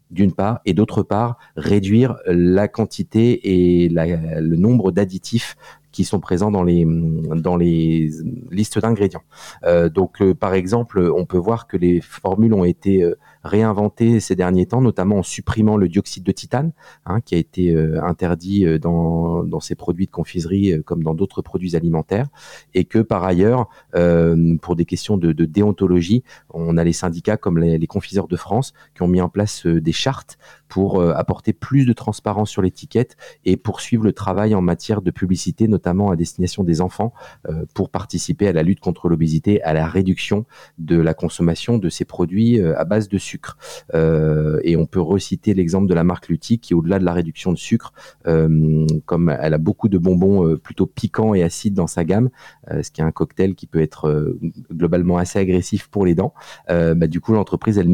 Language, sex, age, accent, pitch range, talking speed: French, male, 40-59, French, 85-105 Hz, 195 wpm